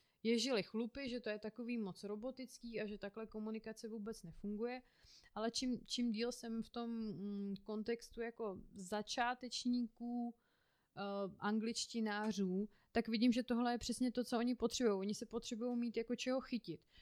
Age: 30-49